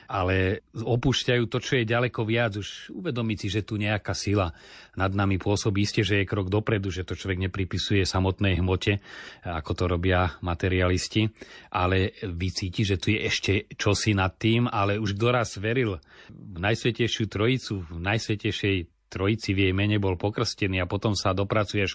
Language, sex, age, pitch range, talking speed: Slovak, male, 30-49, 90-105 Hz, 165 wpm